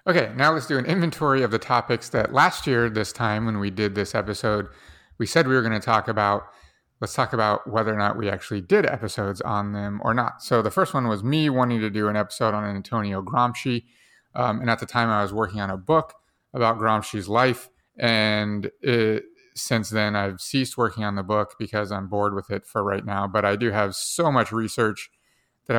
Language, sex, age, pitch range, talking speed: English, male, 30-49, 105-120 Hz, 220 wpm